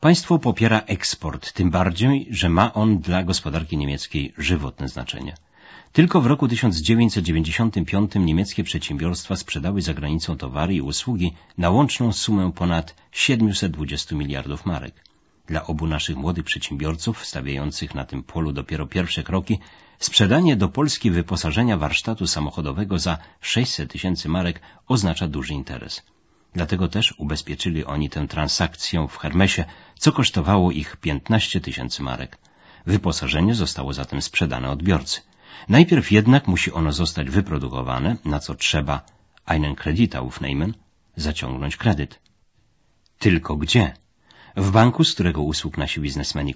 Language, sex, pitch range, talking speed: Polish, male, 75-105 Hz, 125 wpm